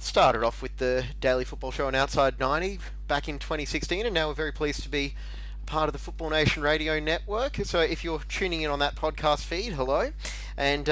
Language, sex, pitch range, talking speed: English, male, 120-155 Hz, 210 wpm